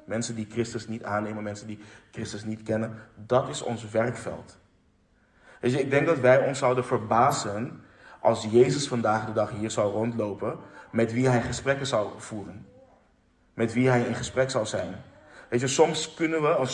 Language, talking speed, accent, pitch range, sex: Dutch, 180 wpm, Dutch, 110-130 Hz, male